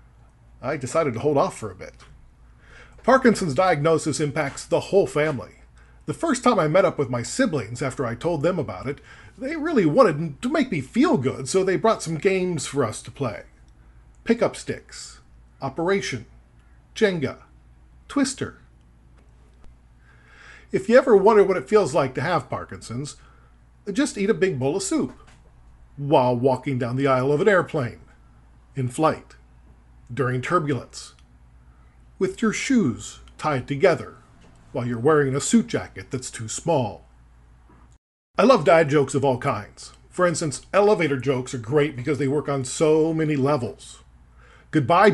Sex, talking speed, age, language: male, 155 wpm, 40-59, English